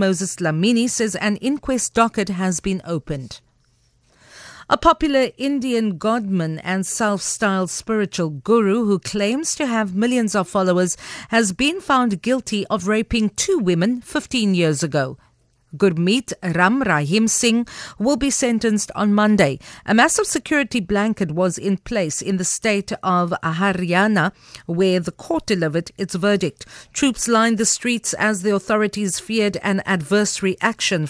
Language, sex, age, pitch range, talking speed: English, female, 50-69, 175-225 Hz, 140 wpm